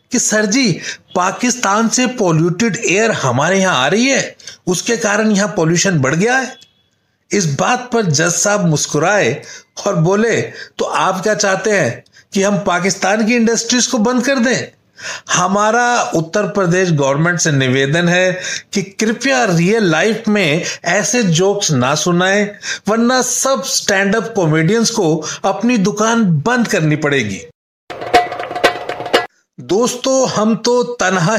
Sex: male